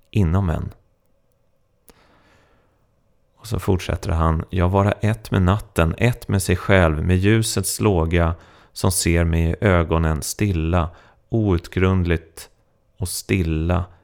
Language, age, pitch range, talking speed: Swedish, 30-49, 90-110 Hz, 115 wpm